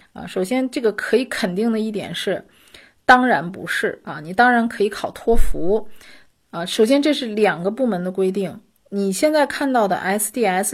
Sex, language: female, Chinese